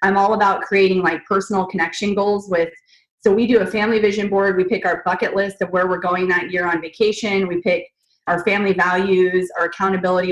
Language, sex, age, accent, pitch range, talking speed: English, female, 20-39, American, 175-210 Hz, 210 wpm